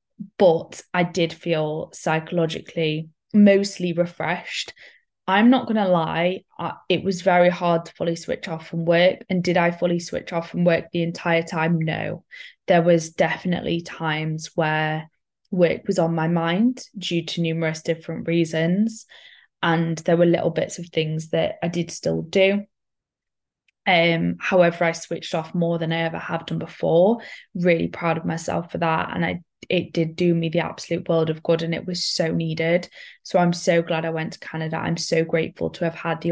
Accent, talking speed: British, 180 wpm